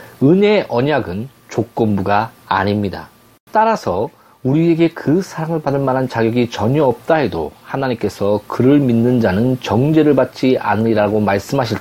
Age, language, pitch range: 40-59, Korean, 110-150 Hz